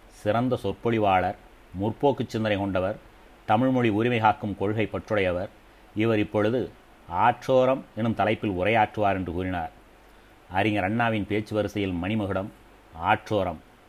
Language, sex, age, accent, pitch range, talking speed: Tamil, male, 30-49, native, 95-115 Hz, 95 wpm